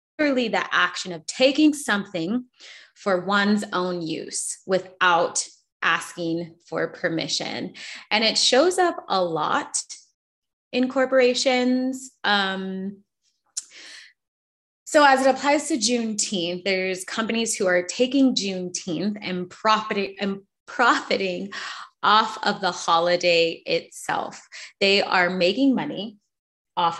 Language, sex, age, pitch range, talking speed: English, female, 20-39, 175-220 Hz, 105 wpm